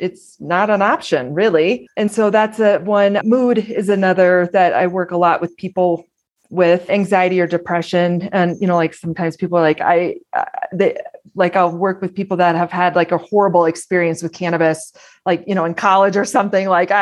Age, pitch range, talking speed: 30-49, 175-200 Hz, 200 wpm